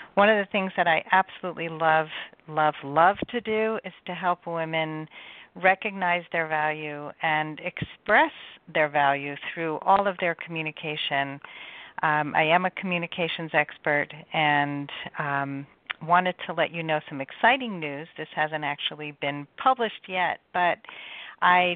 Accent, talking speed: American, 145 wpm